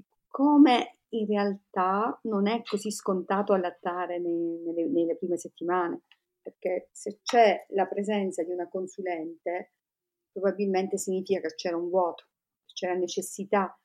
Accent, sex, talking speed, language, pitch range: native, female, 130 wpm, Italian, 180-210 Hz